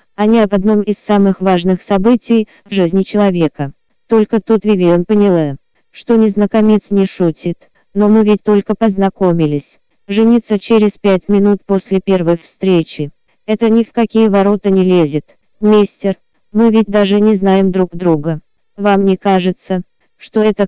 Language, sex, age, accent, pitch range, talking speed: Russian, female, 20-39, native, 190-215 Hz, 150 wpm